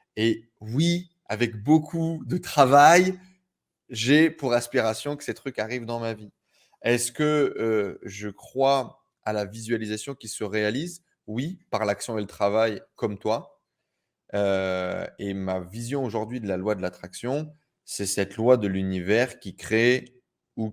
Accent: French